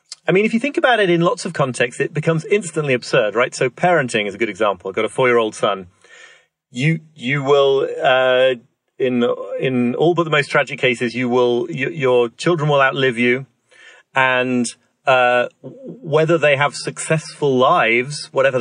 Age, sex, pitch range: 30-49, male, 120-150 Hz